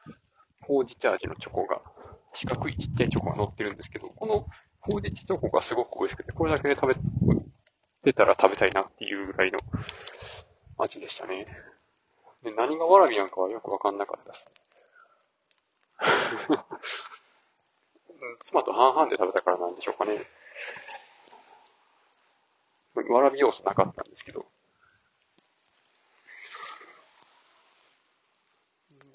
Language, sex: Japanese, male